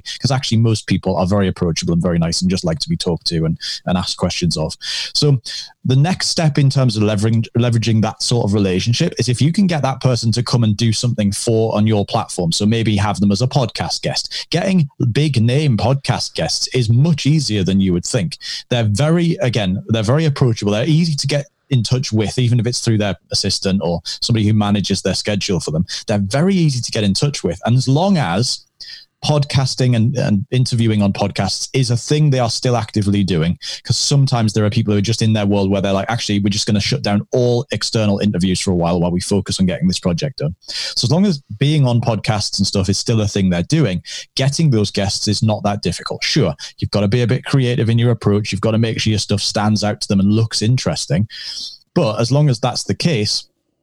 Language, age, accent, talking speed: English, 30-49, British, 235 wpm